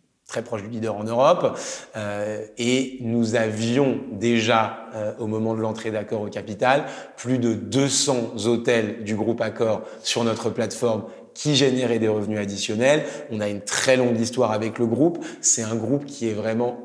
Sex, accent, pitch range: male, French, 110-130 Hz